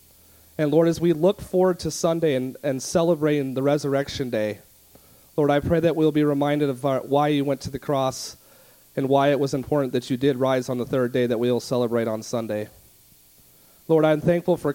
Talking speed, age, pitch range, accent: 210 wpm, 30-49, 120-150 Hz, American